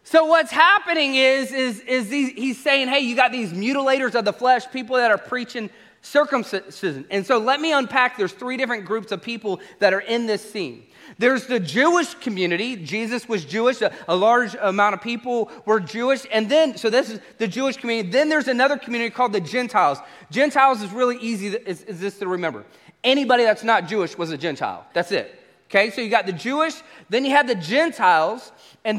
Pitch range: 220-290 Hz